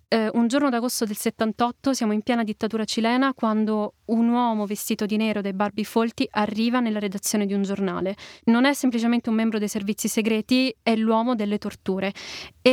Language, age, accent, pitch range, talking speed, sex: Italian, 20-39, native, 210-240 Hz, 185 wpm, female